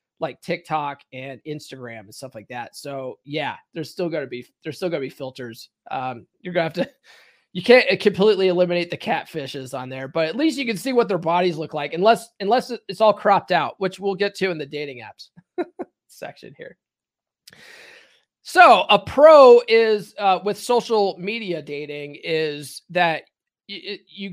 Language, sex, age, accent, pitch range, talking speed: English, male, 30-49, American, 145-195 Hz, 185 wpm